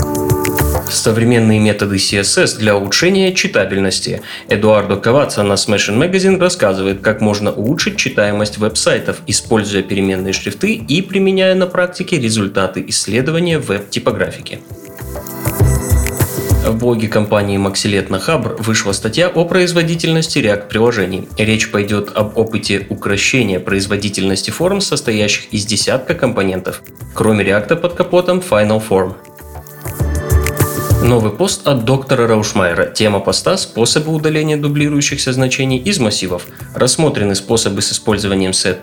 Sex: male